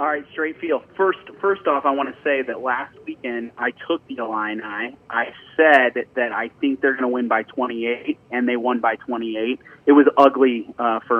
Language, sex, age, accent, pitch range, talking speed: English, male, 30-49, American, 115-145 Hz, 215 wpm